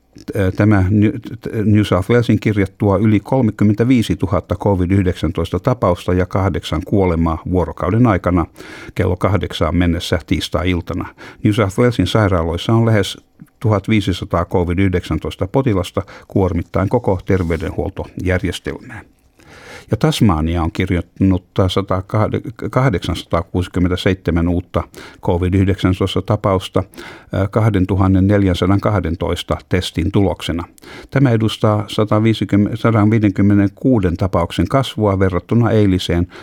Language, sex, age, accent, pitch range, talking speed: Finnish, male, 60-79, native, 85-105 Hz, 75 wpm